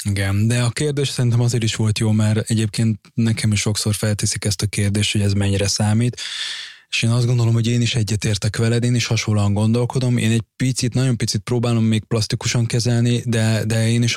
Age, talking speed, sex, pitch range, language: 20-39, 205 wpm, male, 100-115 Hz, Hungarian